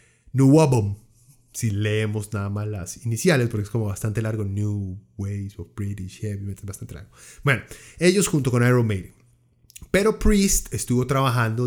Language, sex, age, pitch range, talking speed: Spanish, male, 30-49, 105-140 Hz, 155 wpm